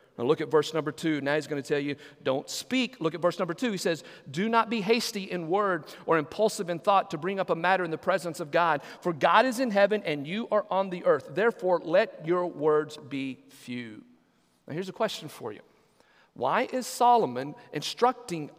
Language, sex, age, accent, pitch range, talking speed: English, male, 50-69, American, 170-250 Hz, 220 wpm